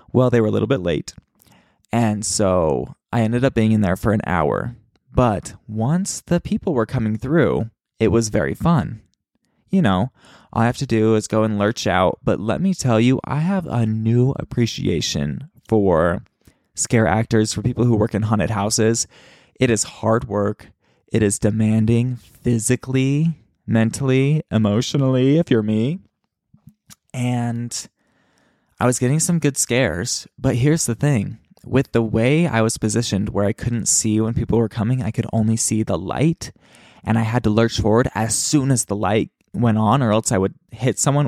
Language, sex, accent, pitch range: English, male, American, 105-125 Hz